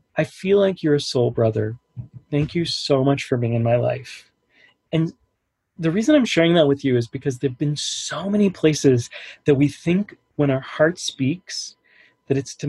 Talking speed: 195 wpm